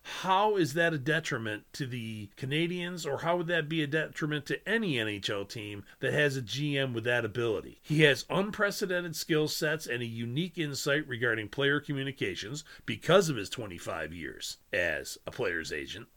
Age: 40-59